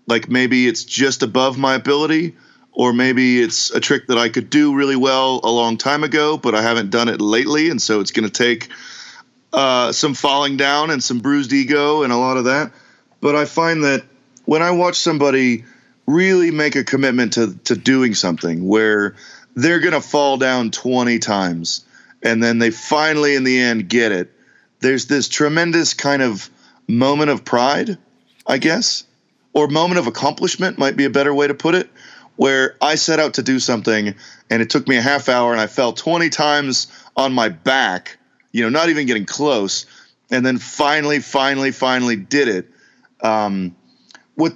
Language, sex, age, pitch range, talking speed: English, male, 30-49, 120-150 Hz, 185 wpm